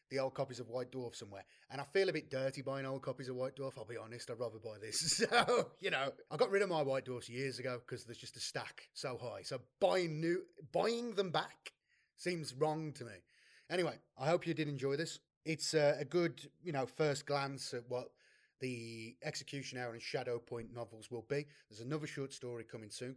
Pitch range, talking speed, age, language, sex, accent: 125-160 Hz, 225 wpm, 30-49, English, male, British